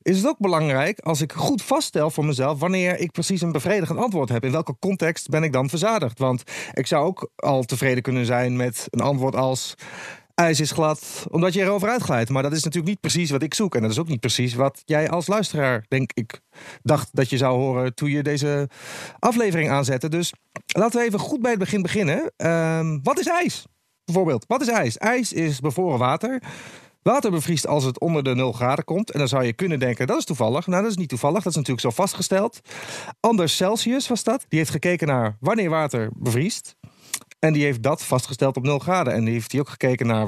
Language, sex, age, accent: Dutch, male, 40-59, Dutch